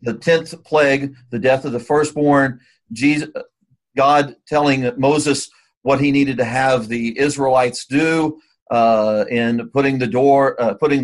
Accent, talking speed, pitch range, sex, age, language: American, 145 wpm, 130-165 Hz, male, 50-69, English